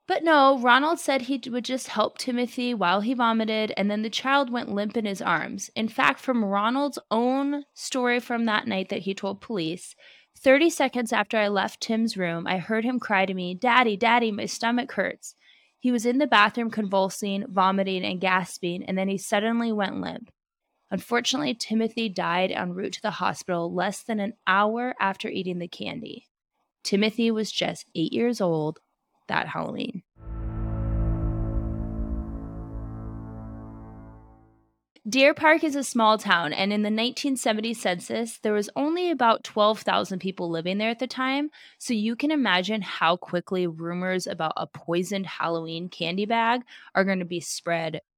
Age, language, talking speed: 20-39, English, 165 wpm